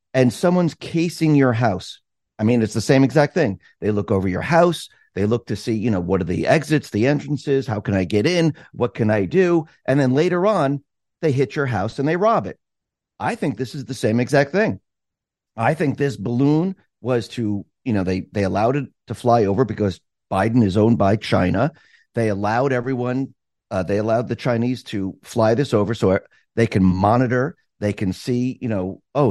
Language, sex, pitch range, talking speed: English, male, 105-140 Hz, 205 wpm